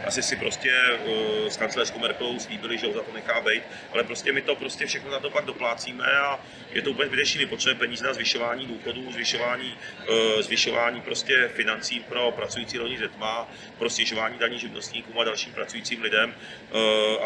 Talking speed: 175 wpm